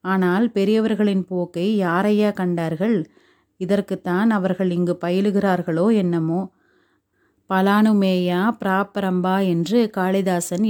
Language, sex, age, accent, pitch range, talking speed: Tamil, female, 30-49, native, 180-210 Hz, 80 wpm